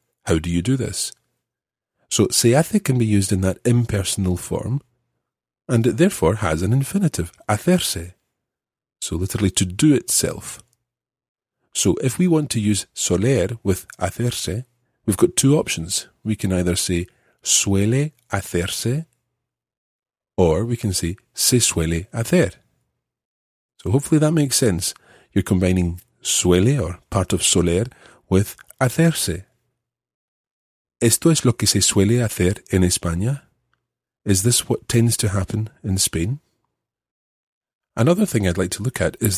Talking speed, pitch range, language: 140 wpm, 95-125 Hz, English